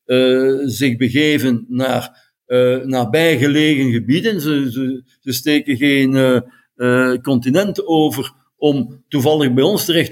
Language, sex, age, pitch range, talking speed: Dutch, male, 60-79, 130-155 Hz, 130 wpm